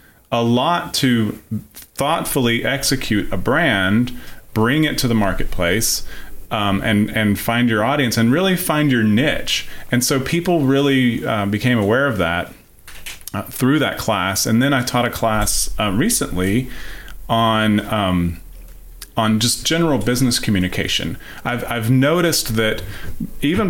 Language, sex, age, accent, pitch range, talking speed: English, male, 30-49, American, 105-130 Hz, 140 wpm